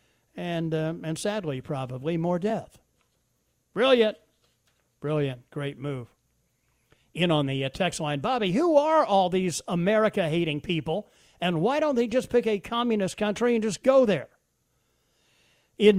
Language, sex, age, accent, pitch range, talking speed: English, male, 50-69, American, 145-220 Hz, 140 wpm